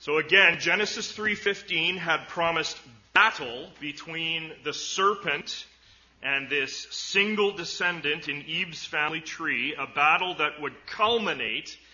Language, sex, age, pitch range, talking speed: English, male, 40-59, 130-175 Hz, 115 wpm